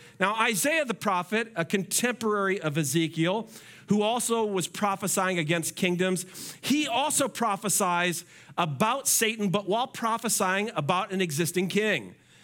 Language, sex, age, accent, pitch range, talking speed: English, male, 40-59, American, 175-220 Hz, 125 wpm